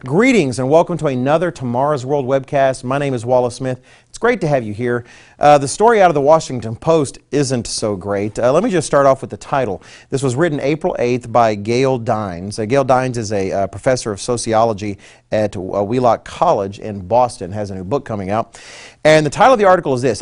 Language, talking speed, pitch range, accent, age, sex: English, 225 wpm, 115-145 Hz, American, 40-59, male